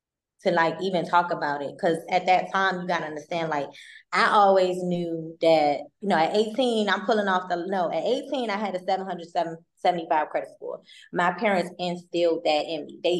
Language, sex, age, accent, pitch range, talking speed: English, female, 20-39, American, 165-190 Hz, 195 wpm